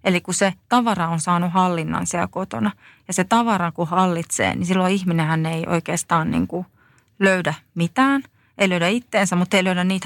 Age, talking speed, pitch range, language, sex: 30-49, 175 wpm, 170-210 Hz, Finnish, female